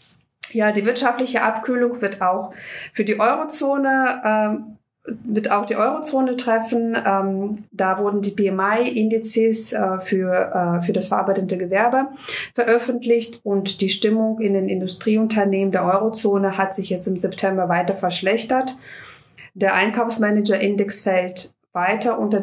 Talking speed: 130 wpm